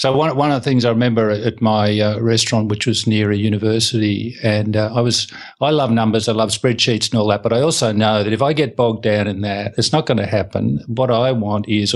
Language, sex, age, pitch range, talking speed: English, male, 50-69, 110-130 Hz, 255 wpm